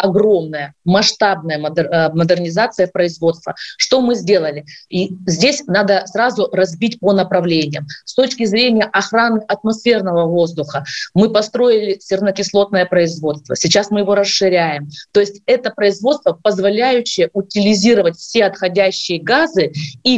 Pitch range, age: 180-225 Hz, 20-39